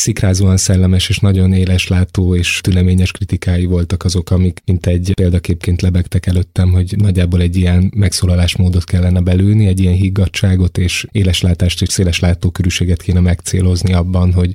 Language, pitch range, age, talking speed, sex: Hungarian, 90-95 Hz, 20-39, 140 wpm, male